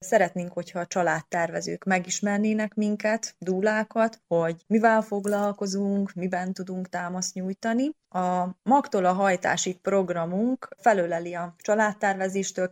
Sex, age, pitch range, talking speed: female, 30-49, 175-210 Hz, 105 wpm